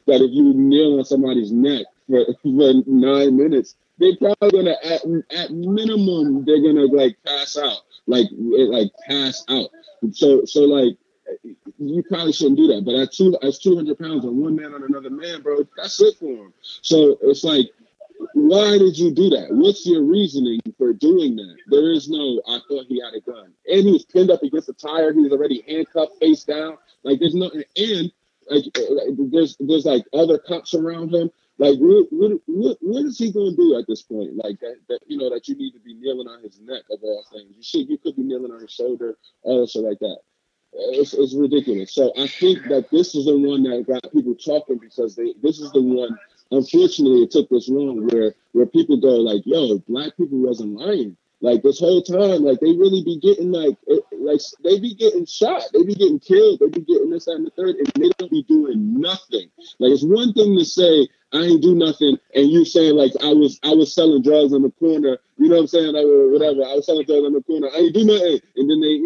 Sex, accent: male, American